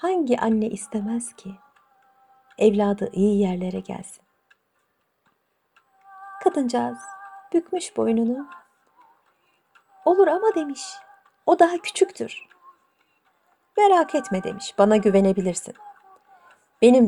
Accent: native